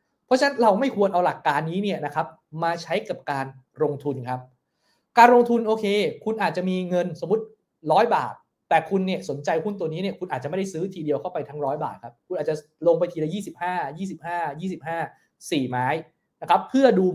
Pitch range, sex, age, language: 165-220 Hz, male, 20-39, English